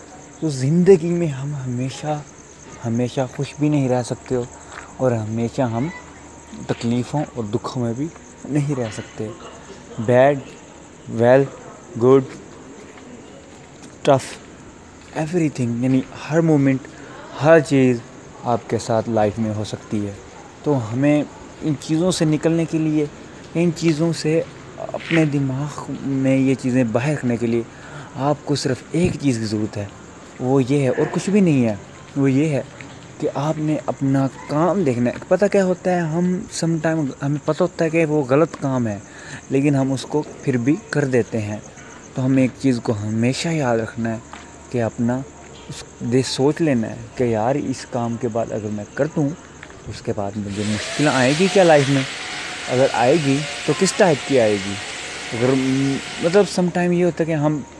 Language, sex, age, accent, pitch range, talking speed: English, male, 30-49, Indian, 120-155 Hz, 155 wpm